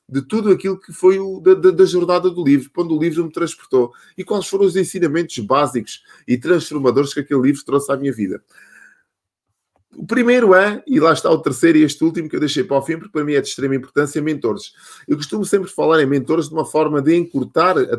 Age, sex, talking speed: 20-39, male, 230 wpm